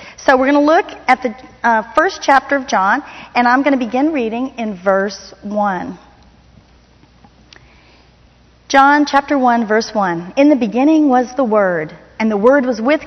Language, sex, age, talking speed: English, female, 40-59, 170 wpm